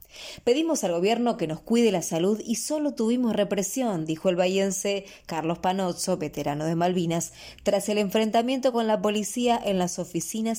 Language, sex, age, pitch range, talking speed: English, female, 20-39, 180-230 Hz, 165 wpm